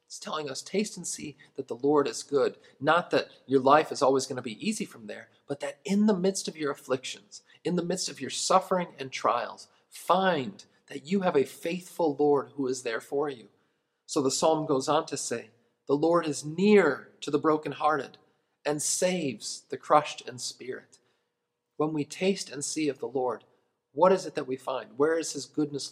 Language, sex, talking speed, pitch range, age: English, male, 205 wpm, 135-160 Hz, 40-59